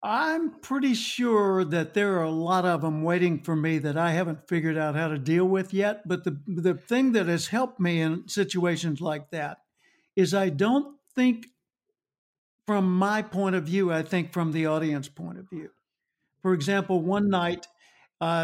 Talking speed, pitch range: 185 wpm, 165-205 Hz